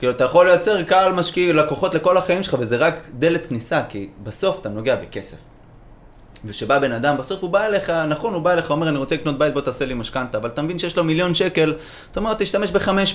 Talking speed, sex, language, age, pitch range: 230 wpm, male, Hebrew, 20-39, 115-180 Hz